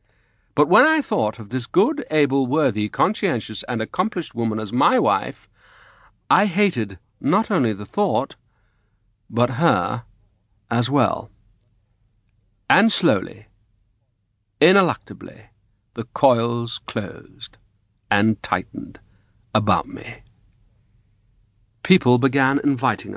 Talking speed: 100 wpm